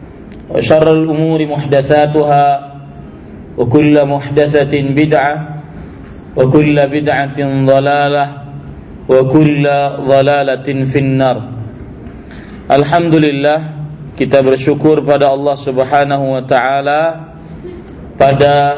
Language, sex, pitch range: Indonesian, male, 135-145 Hz